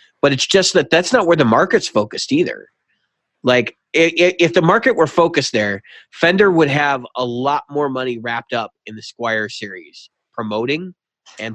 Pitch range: 110-150 Hz